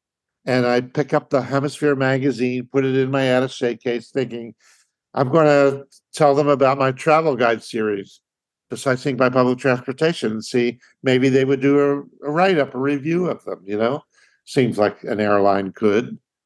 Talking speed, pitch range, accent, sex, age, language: 180 wpm, 125-150 Hz, American, male, 50-69, English